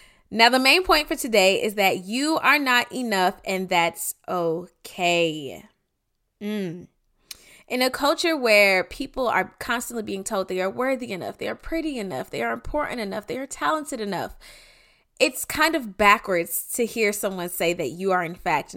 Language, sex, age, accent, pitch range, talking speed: English, female, 20-39, American, 195-275 Hz, 175 wpm